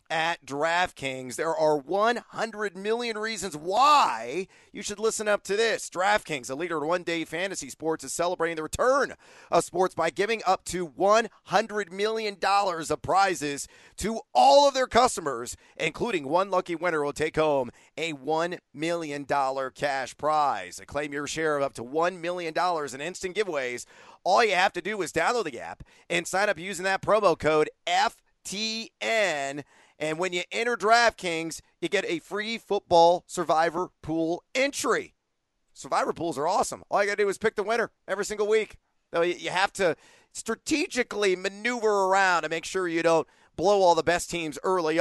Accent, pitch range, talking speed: American, 155-205 Hz, 170 wpm